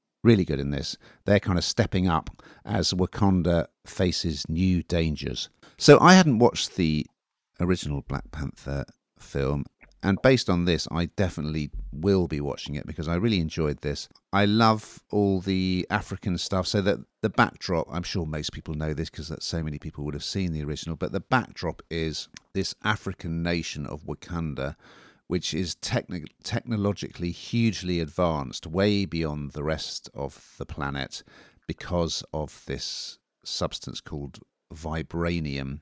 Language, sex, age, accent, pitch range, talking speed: English, male, 50-69, British, 75-95 Hz, 150 wpm